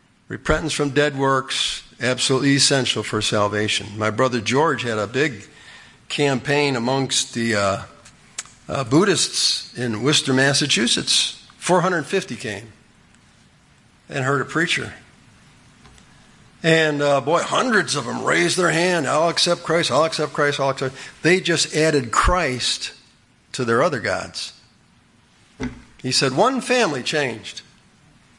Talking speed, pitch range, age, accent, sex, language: 125 wpm, 120-165 Hz, 50-69, American, male, English